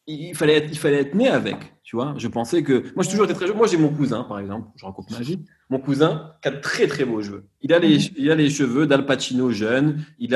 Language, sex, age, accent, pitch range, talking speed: French, male, 30-49, French, 115-160 Hz, 270 wpm